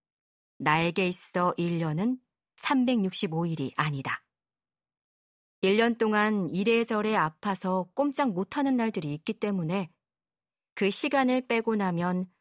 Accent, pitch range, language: native, 170-225 Hz, Korean